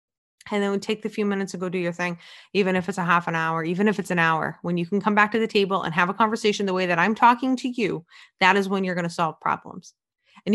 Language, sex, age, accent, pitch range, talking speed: English, female, 20-39, American, 175-220 Hz, 295 wpm